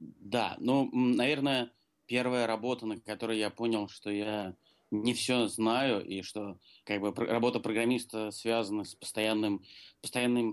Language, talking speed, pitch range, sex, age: Ukrainian, 140 wpm, 100-115 Hz, male, 20-39